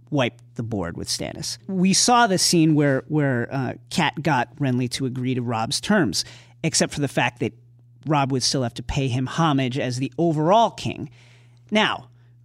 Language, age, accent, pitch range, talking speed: English, 40-59, American, 125-175 Hz, 185 wpm